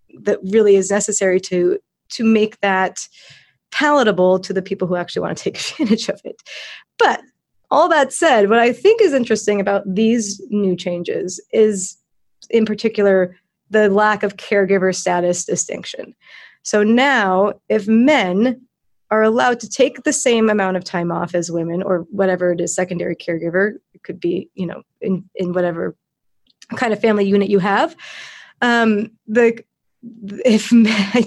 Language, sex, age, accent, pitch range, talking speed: English, female, 30-49, American, 195-230 Hz, 155 wpm